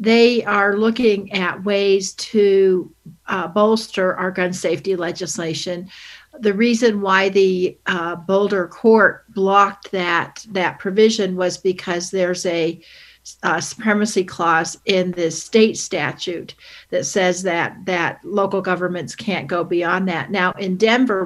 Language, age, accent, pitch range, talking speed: English, 60-79, American, 185-225 Hz, 135 wpm